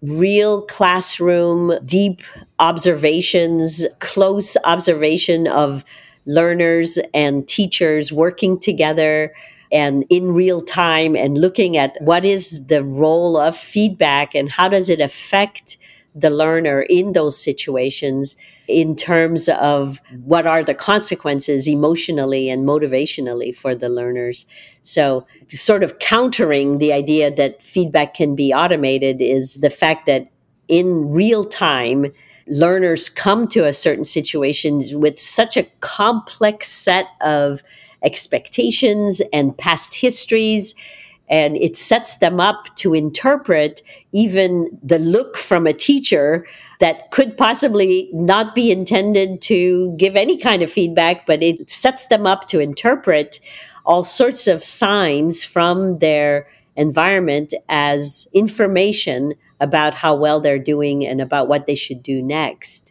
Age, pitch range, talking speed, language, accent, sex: 50-69, 145-190 Hz, 130 wpm, English, American, female